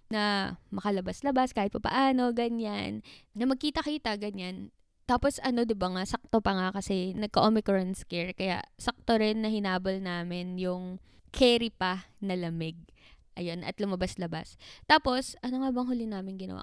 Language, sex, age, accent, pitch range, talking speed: Filipino, female, 20-39, native, 200-255 Hz, 150 wpm